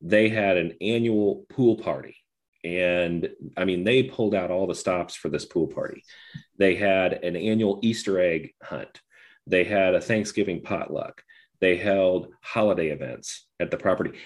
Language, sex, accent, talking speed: English, male, American, 160 wpm